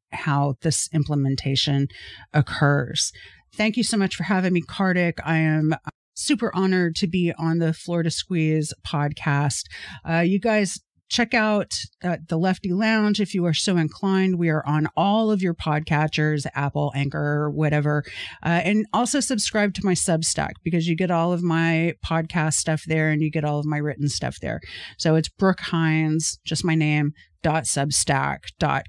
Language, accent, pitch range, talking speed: English, American, 150-190 Hz, 170 wpm